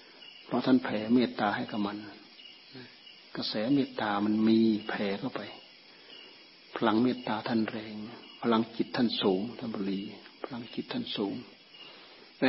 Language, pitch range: Thai, 110-130 Hz